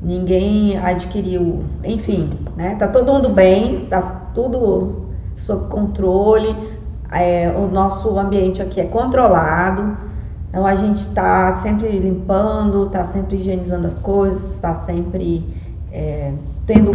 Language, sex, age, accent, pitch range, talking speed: Portuguese, female, 20-39, Brazilian, 165-205 Hz, 120 wpm